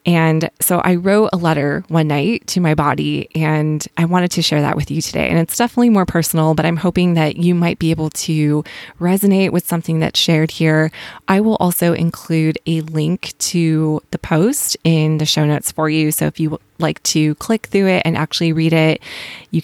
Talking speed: 210 wpm